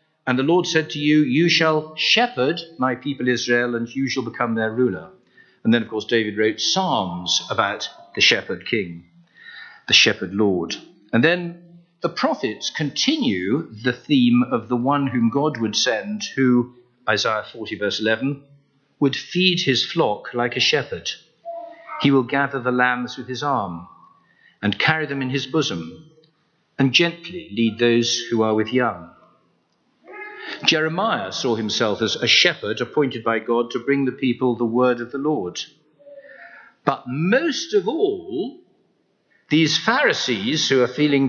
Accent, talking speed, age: British, 155 wpm, 50-69